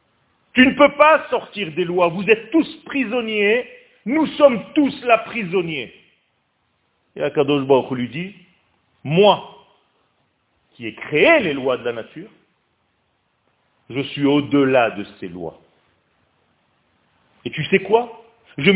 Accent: French